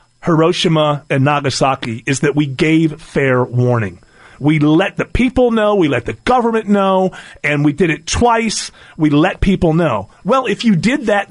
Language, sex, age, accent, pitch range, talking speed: English, male, 40-59, American, 150-210 Hz, 175 wpm